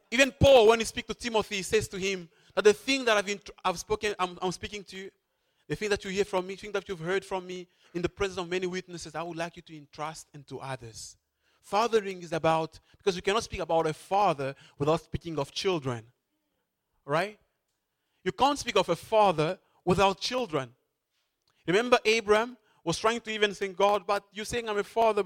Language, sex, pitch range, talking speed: English, male, 170-220 Hz, 205 wpm